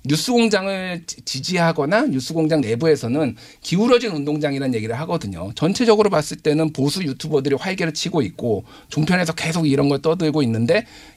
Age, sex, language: 50-69, male, Korean